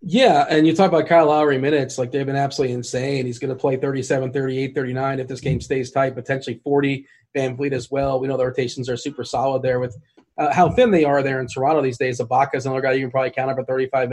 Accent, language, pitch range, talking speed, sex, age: American, English, 125-145 Hz, 255 wpm, male, 30-49